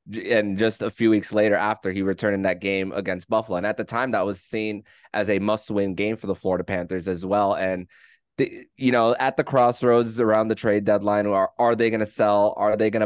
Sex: male